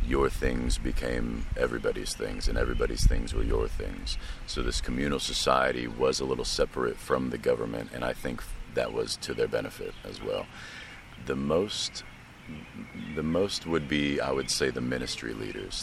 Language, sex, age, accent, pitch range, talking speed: English, male, 40-59, American, 65-85 Hz, 165 wpm